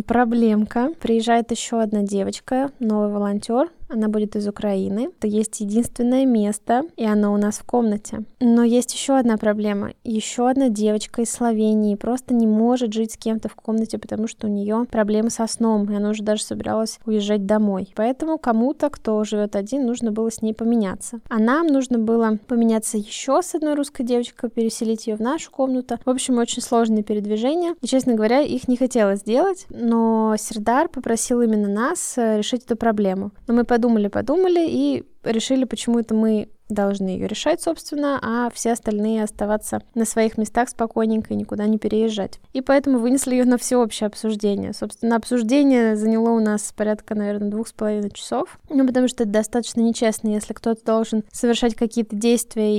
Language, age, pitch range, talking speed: Russian, 20-39, 215-245 Hz, 175 wpm